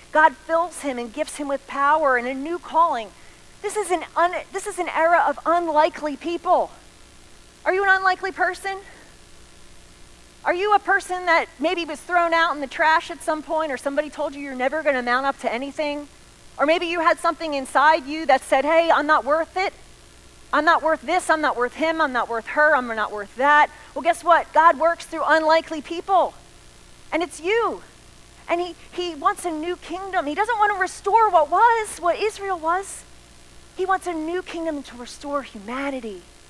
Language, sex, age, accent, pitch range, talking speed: English, female, 40-59, American, 265-345 Hz, 195 wpm